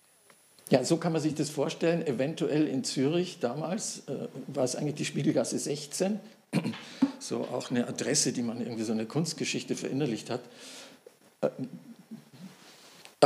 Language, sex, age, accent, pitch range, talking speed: German, male, 50-69, German, 120-145 Hz, 140 wpm